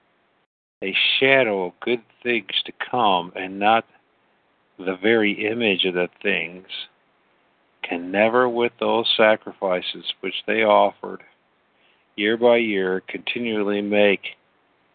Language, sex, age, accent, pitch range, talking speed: English, male, 50-69, American, 95-115 Hz, 110 wpm